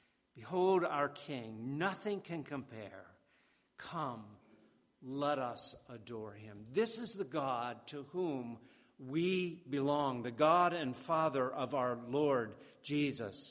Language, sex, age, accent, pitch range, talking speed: English, male, 50-69, American, 120-150 Hz, 120 wpm